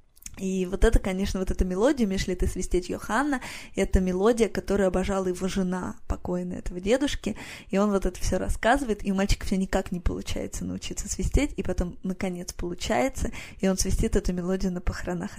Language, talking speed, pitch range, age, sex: Russian, 170 wpm, 180-210 Hz, 20-39, female